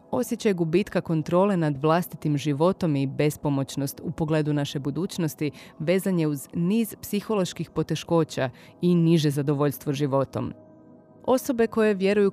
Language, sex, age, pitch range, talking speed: Croatian, female, 30-49, 150-185 Hz, 120 wpm